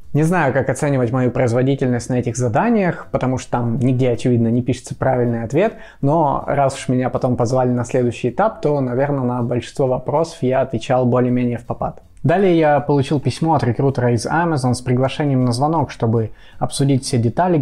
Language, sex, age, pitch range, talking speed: Russian, male, 20-39, 125-150 Hz, 180 wpm